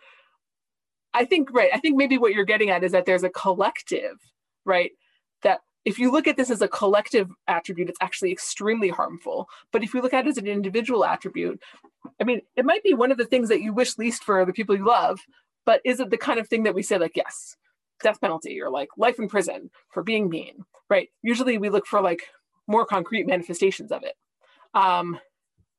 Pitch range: 190-260 Hz